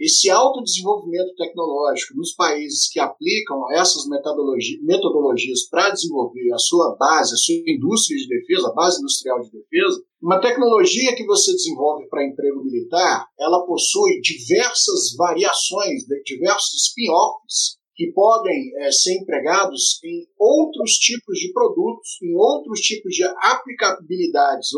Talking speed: 135 wpm